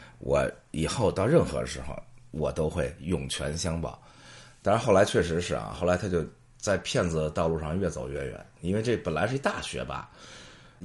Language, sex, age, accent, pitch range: Chinese, male, 30-49, native, 75-100 Hz